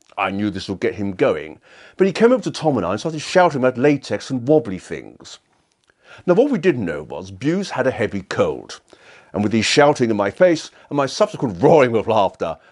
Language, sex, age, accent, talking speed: English, male, 50-69, British, 220 wpm